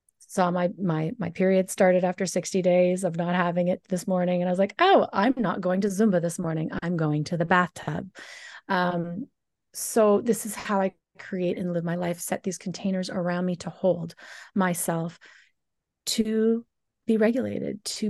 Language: English